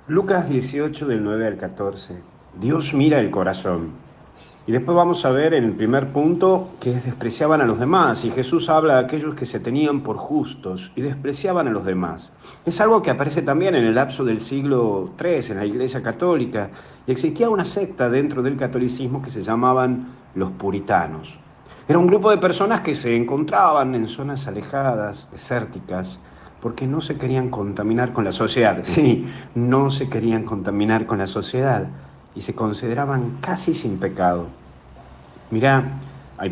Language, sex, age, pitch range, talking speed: Spanish, male, 50-69, 105-140 Hz, 170 wpm